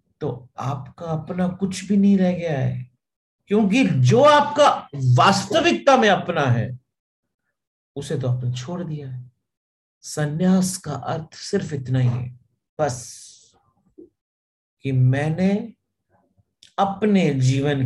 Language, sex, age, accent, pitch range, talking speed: English, male, 50-69, Indian, 125-180 Hz, 115 wpm